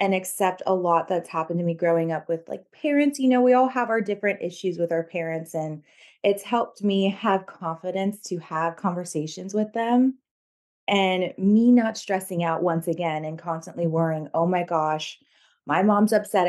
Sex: female